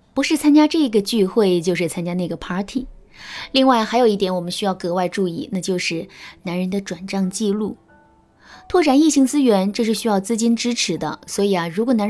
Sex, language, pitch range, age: female, Chinese, 185-255 Hz, 20-39